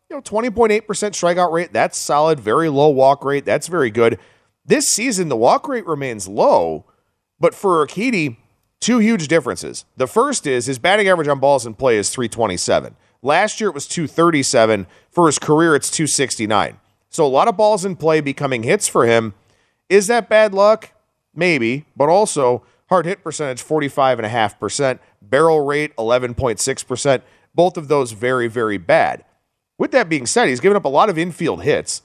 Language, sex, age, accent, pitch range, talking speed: English, male, 40-59, American, 125-185 Hz, 170 wpm